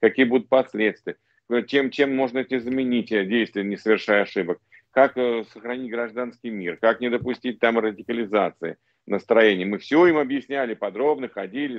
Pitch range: 110-140 Hz